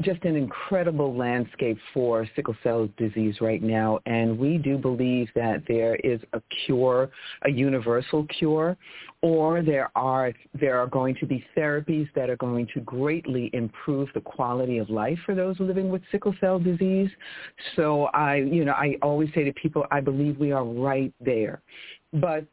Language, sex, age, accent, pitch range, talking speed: English, female, 50-69, American, 130-160 Hz, 170 wpm